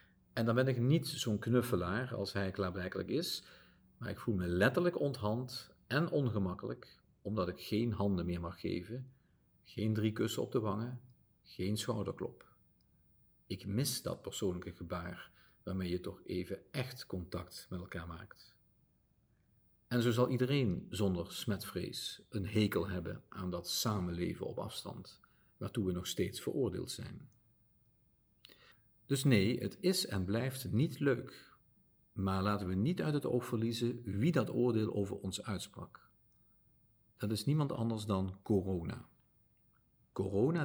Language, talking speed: Dutch, 145 wpm